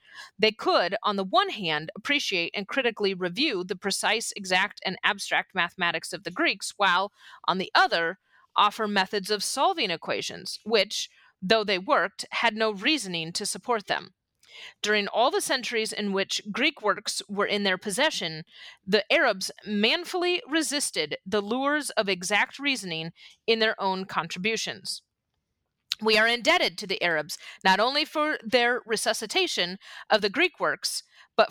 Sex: female